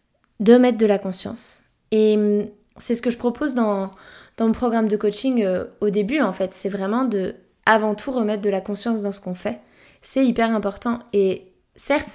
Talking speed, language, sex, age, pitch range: 200 wpm, French, female, 20-39, 200-235 Hz